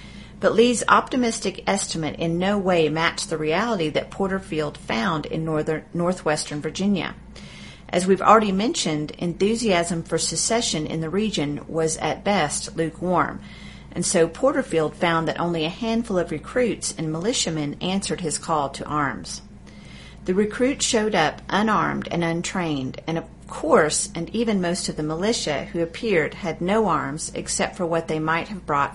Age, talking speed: 40-59, 160 wpm